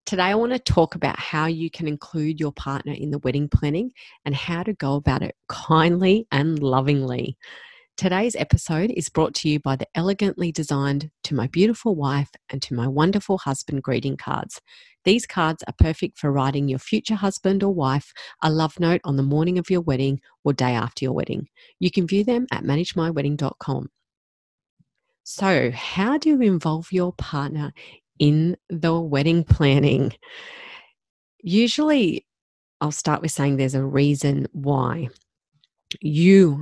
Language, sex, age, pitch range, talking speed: English, female, 40-59, 140-185 Hz, 160 wpm